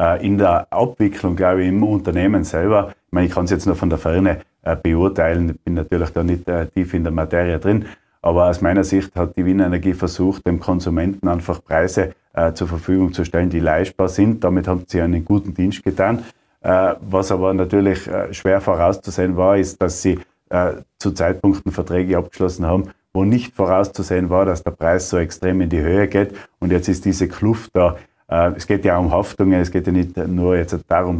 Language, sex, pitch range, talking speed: German, male, 90-100 Hz, 210 wpm